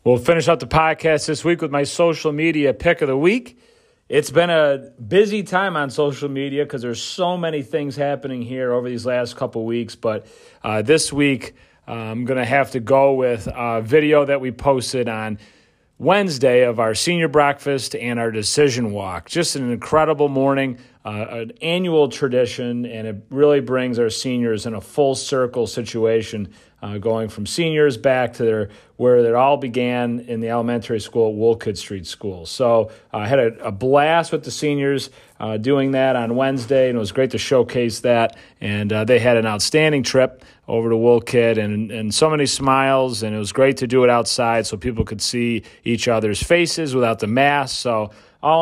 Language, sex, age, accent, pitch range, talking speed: English, male, 40-59, American, 115-145 Hz, 195 wpm